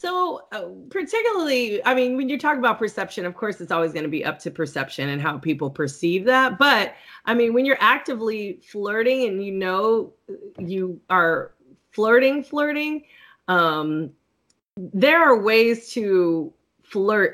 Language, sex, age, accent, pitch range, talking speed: English, female, 30-49, American, 175-250 Hz, 155 wpm